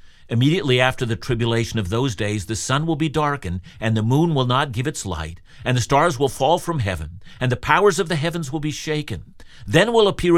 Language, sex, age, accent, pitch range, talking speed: English, male, 50-69, American, 115-160 Hz, 225 wpm